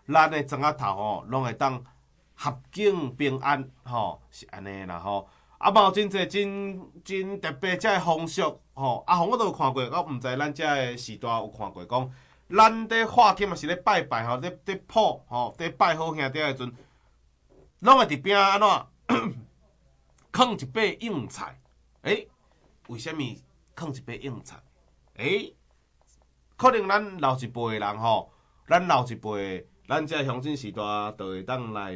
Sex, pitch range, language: male, 110-175 Hz, Chinese